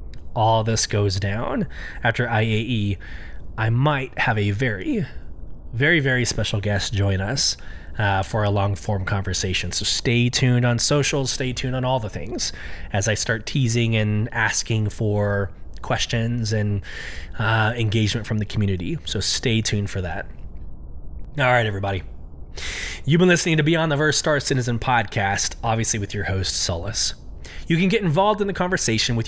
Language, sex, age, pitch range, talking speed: English, male, 20-39, 100-140 Hz, 160 wpm